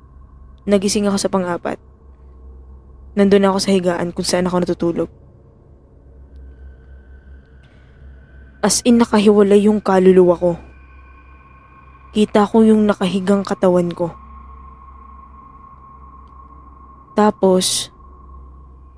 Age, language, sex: 20-39, Filipino, female